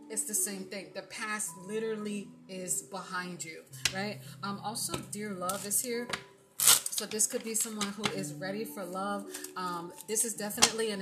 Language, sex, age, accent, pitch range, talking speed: English, female, 30-49, American, 180-220 Hz, 175 wpm